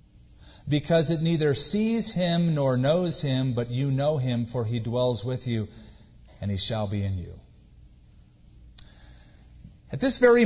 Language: English